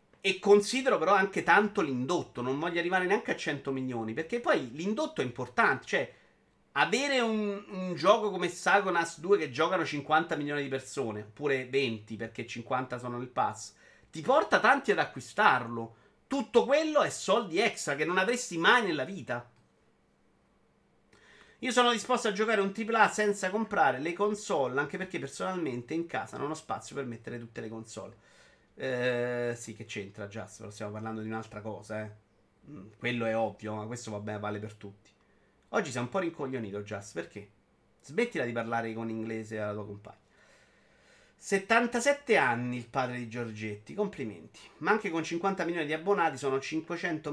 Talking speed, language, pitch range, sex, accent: 165 wpm, Italian, 115-185 Hz, male, native